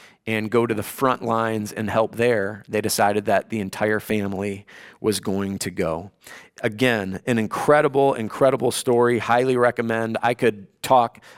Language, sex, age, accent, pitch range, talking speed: English, male, 40-59, American, 105-135 Hz, 155 wpm